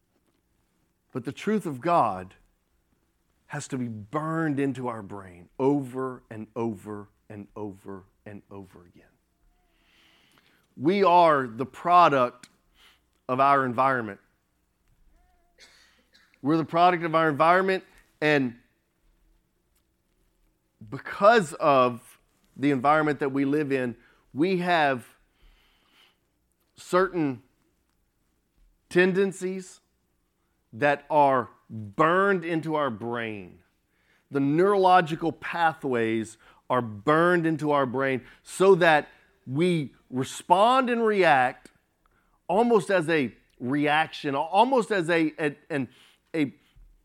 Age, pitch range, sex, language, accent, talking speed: 40-59, 105-160 Hz, male, English, American, 95 wpm